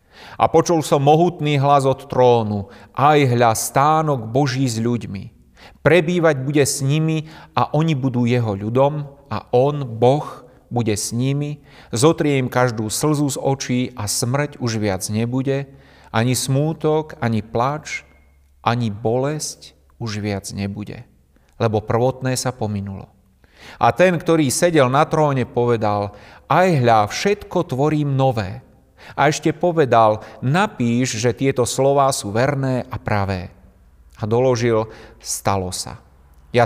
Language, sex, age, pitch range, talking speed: Slovak, male, 40-59, 105-135 Hz, 130 wpm